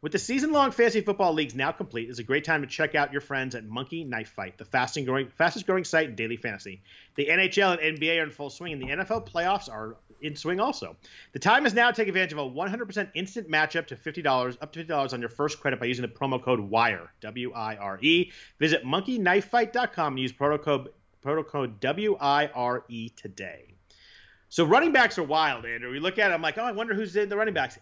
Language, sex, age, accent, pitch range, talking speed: English, male, 40-59, American, 125-175 Hz, 215 wpm